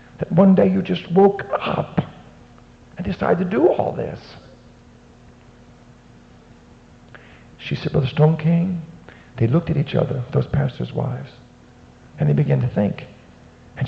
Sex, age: male, 50-69